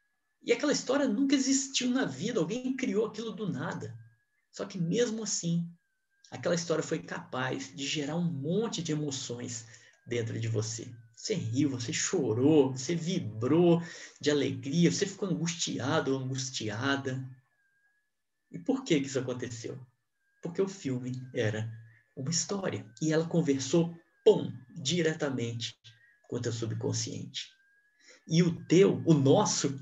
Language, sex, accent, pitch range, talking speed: Portuguese, male, Brazilian, 125-180 Hz, 135 wpm